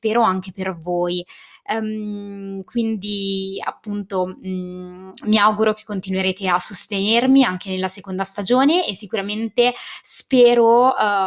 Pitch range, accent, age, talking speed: 185-225 Hz, native, 20-39, 100 wpm